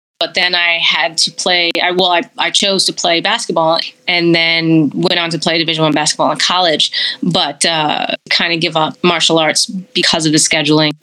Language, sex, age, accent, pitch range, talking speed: English, female, 20-39, American, 160-180 Hz, 200 wpm